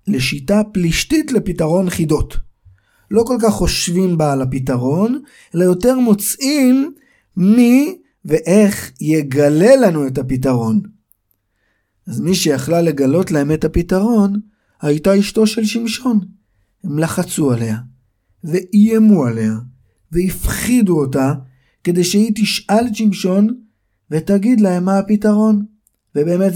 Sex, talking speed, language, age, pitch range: male, 105 wpm, Hebrew, 50-69, 130-210 Hz